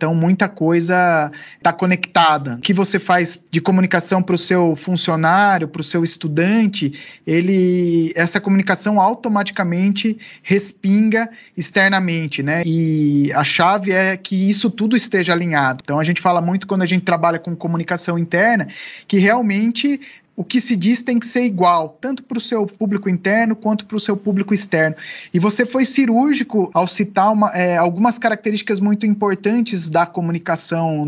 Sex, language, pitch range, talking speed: male, Portuguese, 170-205 Hz, 155 wpm